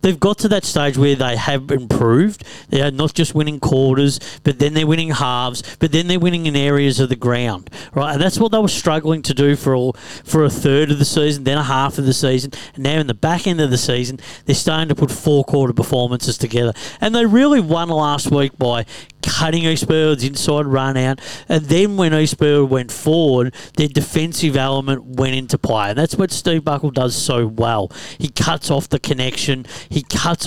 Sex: male